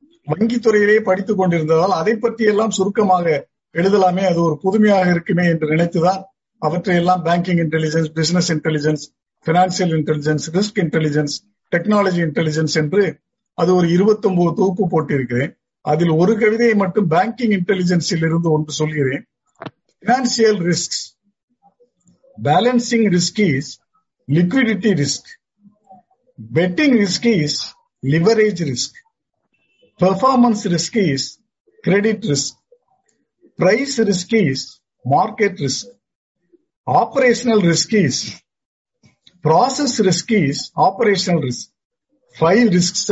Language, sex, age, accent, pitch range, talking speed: Tamil, male, 50-69, native, 160-210 Hz, 100 wpm